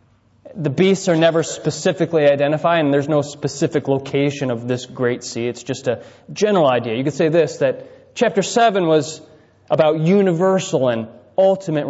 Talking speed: 160 wpm